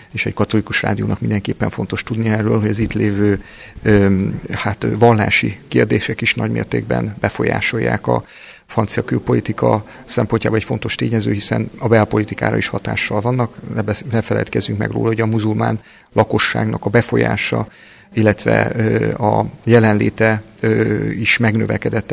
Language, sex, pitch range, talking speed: Hungarian, male, 100-115 Hz, 125 wpm